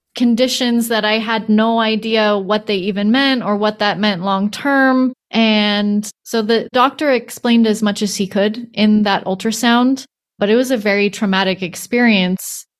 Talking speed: 165 wpm